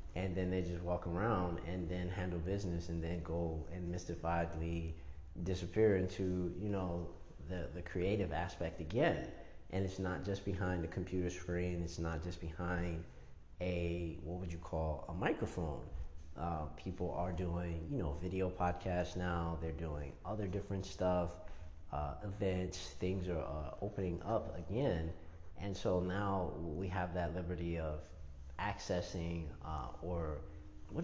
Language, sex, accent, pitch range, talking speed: English, male, American, 85-100 Hz, 150 wpm